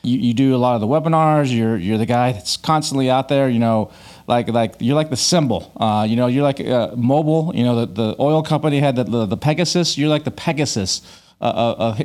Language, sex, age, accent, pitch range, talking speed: English, male, 40-59, American, 120-150 Hz, 240 wpm